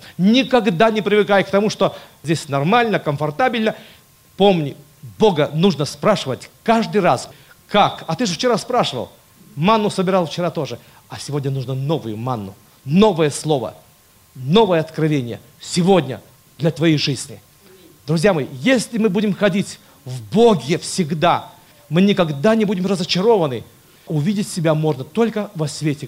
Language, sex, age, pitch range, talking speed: Russian, male, 50-69, 140-195 Hz, 135 wpm